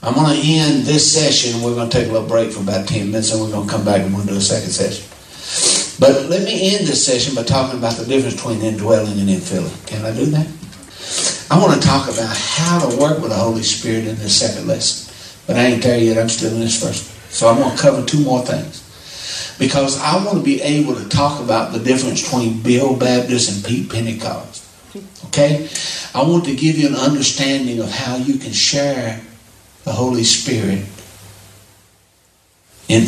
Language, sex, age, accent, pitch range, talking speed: English, male, 60-79, American, 110-140 Hz, 215 wpm